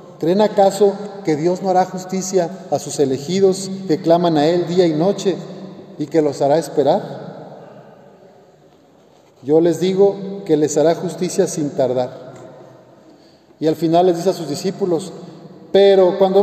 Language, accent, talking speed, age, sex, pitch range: Spanish, Mexican, 150 wpm, 40-59, male, 155-195 Hz